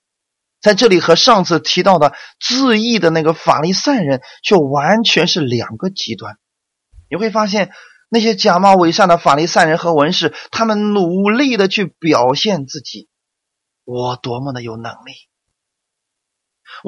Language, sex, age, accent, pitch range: Chinese, male, 30-49, native, 135-195 Hz